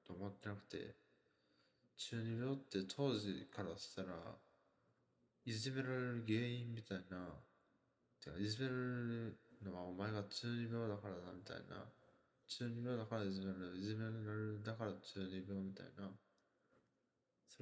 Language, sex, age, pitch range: Japanese, male, 20-39, 100-110 Hz